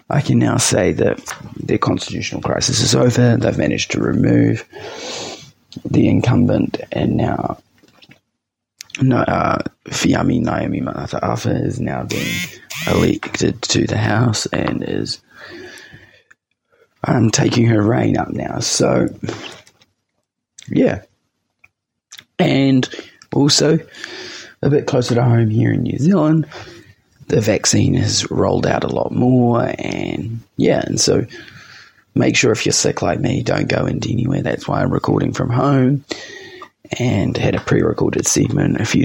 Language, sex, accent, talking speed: English, male, Australian, 135 wpm